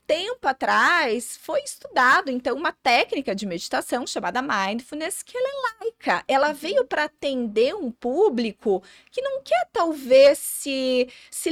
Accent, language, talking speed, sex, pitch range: Brazilian, Portuguese, 140 wpm, female, 235-320 Hz